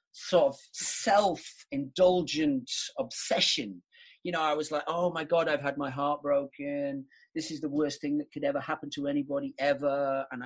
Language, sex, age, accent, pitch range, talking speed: Spanish, male, 30-49, British, 130-185 Hz, 170 wpm